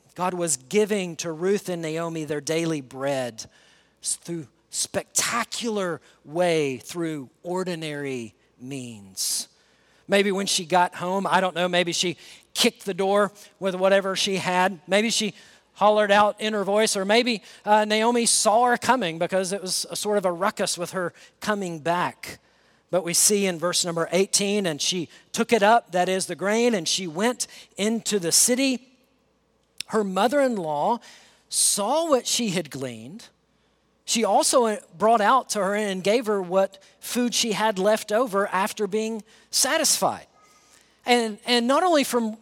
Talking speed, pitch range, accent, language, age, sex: 155 wpm, 180-230 Hz, American, English, 40-59, male